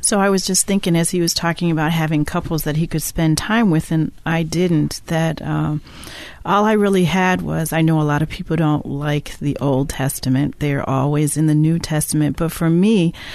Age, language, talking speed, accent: 40-59, English, 225 wpm, American